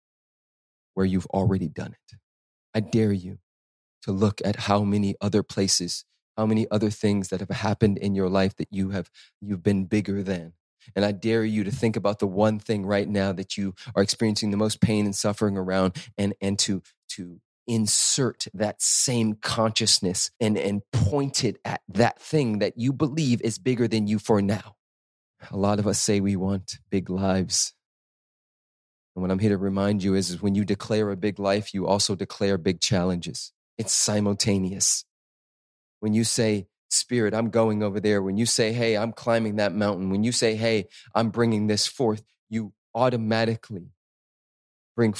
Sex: male